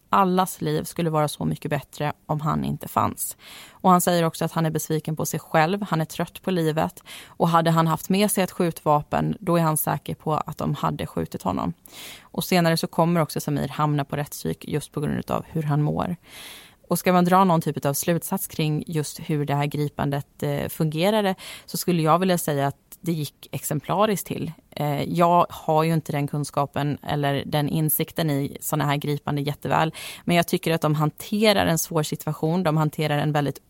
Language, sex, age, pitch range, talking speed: Swedish, female, 30-49, 150-175 Hz, 200 wpm